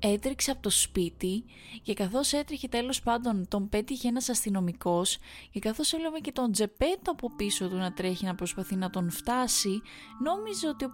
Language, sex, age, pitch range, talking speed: Greek, female, 20-39, 190-240 Hz, 175 wpm